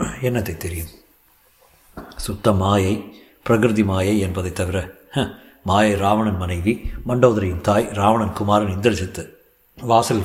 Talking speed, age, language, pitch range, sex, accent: 100 wpm, 50-69, Tamil, 95-115 Hz, male, native